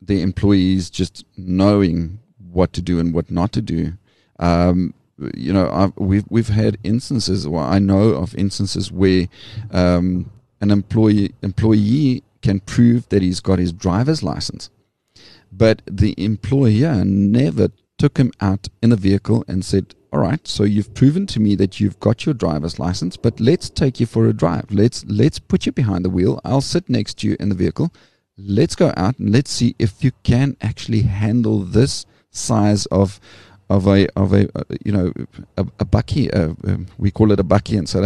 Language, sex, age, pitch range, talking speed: English, male, 40-59, 95-115 Hz, 190 wpm